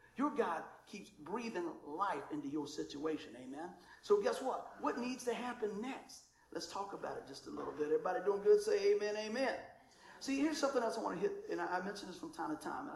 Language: English